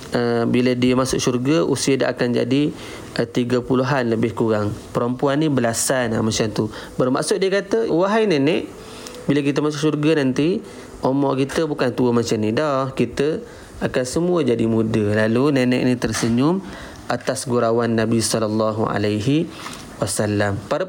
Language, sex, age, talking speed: Malay, male, 30-49, 150 wpm